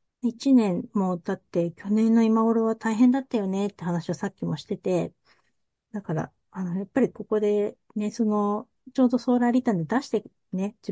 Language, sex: Japanese, female